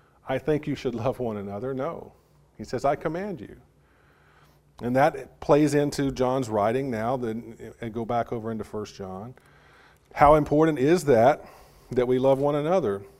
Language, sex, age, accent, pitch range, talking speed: English, male, 40-59, American, 115-140 Hz, 165 wpm